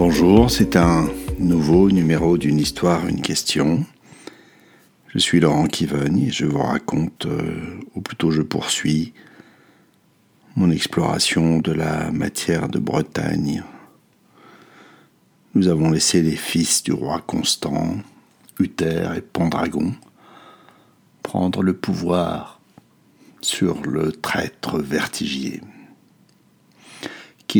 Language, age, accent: French, 60-79, French